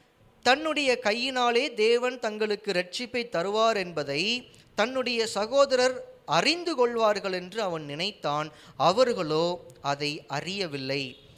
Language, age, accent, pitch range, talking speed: Tamil, 20-39, native, 170-245 Hz, 90 wpm